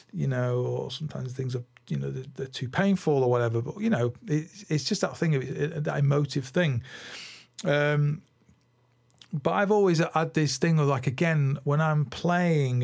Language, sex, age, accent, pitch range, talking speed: English, male, 40-59, British, 125-160 Hz, 190 wpm